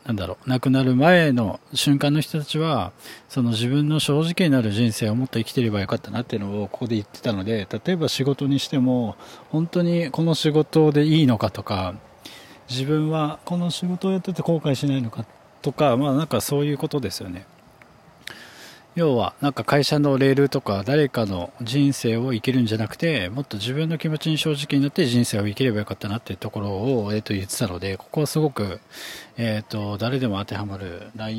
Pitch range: 110-145 Hz